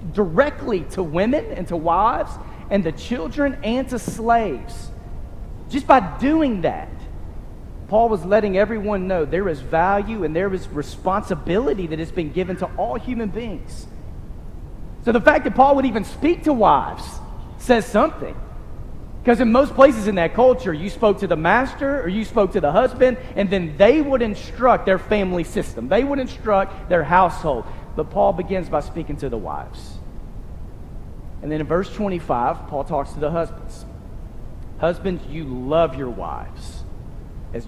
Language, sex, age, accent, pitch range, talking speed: English, male, 40-59, American, 150-215 Hz, 165 wpm